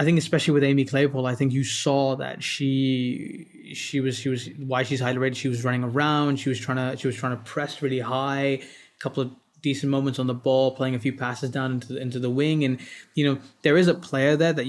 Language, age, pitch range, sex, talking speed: English, 20-39, 130-145 Hz, male, 255 wpm